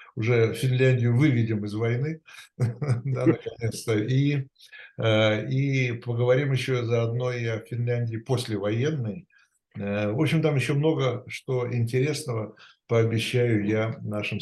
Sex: male